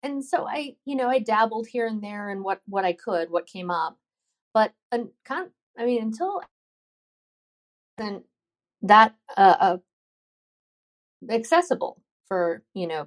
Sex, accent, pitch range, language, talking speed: female, American, 180-230 Hz, English, 140 wpm